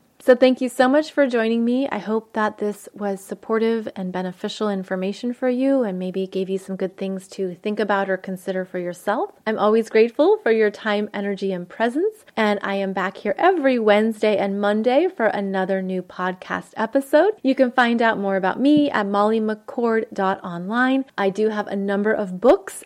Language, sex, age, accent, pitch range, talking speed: English, female, 30-49, American, 205-255 Hz, 190 wpm